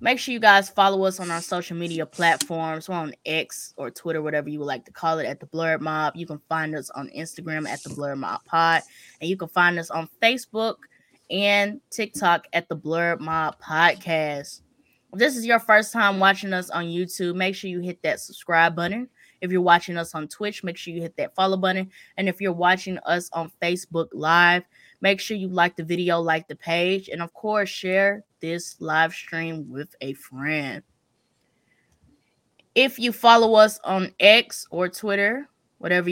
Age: 20-39